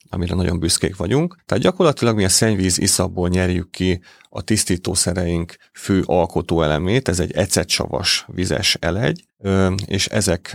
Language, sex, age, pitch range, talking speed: Hungarian, male, 30-49, 85-105 Hz, 135 wpm